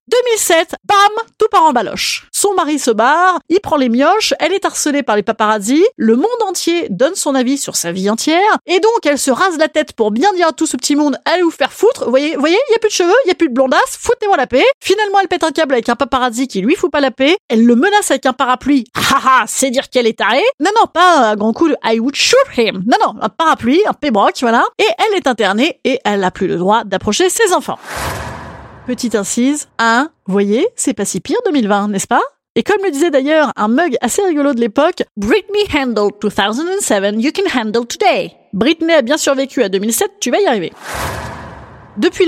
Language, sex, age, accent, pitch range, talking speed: French, female, 30-49, French, 225-355 Hz, 245 wpm